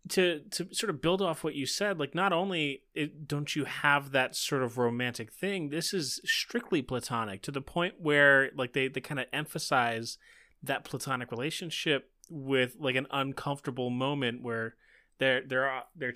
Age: 20-39